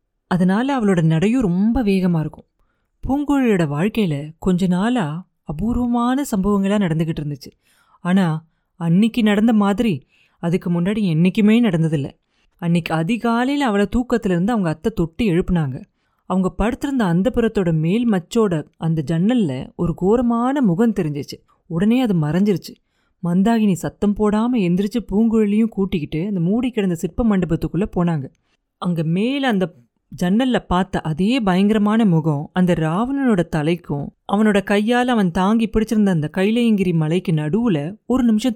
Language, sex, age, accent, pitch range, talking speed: Tamil, female, 30-49, native, 170-225 Hz, 125 wpm